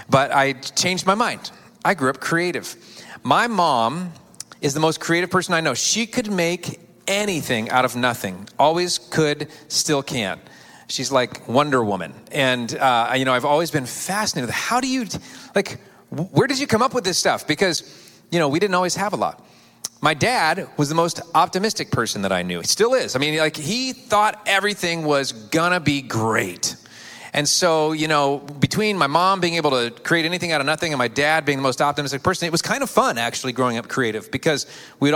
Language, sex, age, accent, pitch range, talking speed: English, male, 40-59, American, 125-170 Hz, 205 wpm